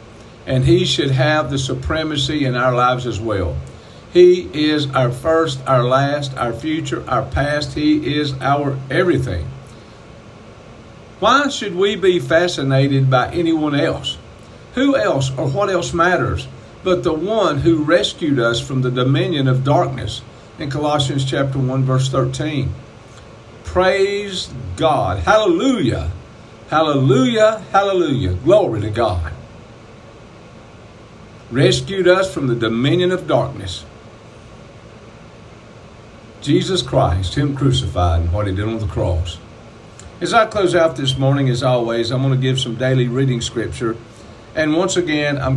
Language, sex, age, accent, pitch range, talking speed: English, male, 50-69, American, 115-150 Hz, 135 wpm